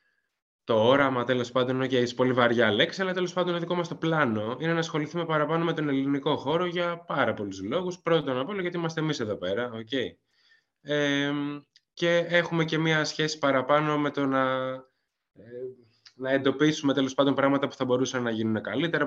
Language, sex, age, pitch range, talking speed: Greek, male, 20-39, 125-150 Hz, 185 wpm